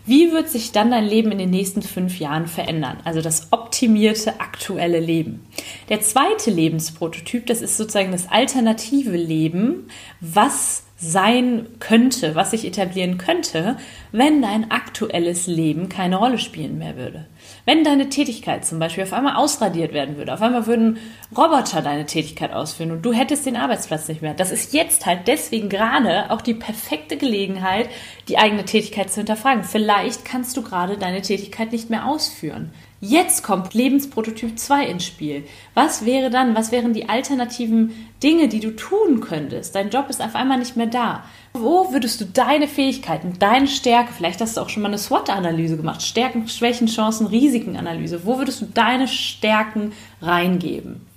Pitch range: 180-245 Hz